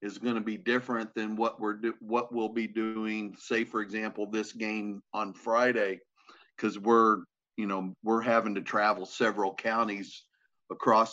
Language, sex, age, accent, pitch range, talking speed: English, male, 50-69, American, 105-120 Hz, 165 wpm